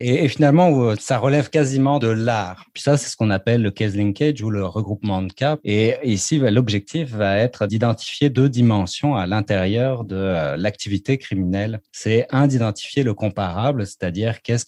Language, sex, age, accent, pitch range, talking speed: French, male, 30-49, French, 100-130 Hz, 170 wpm